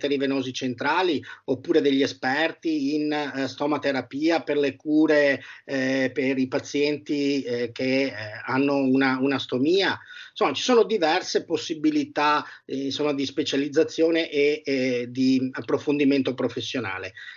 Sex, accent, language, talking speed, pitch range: male, native, Italian, 125 wpm, 135-160 Hz